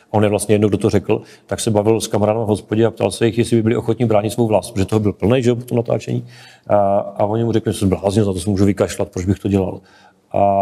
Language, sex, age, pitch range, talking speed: Czech, male, 40-59, 105-115 Hz, 275 wpm